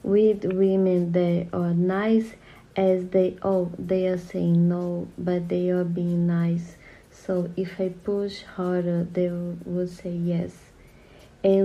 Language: English